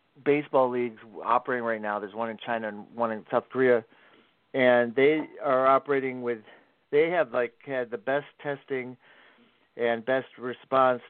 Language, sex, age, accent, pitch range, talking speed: English, male, 40-59, American, 115-135 Hz, 155 wpm